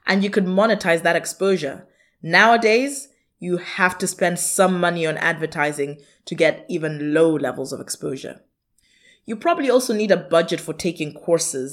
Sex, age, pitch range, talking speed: female, 20-39, 165-205 Hz, 160 wpm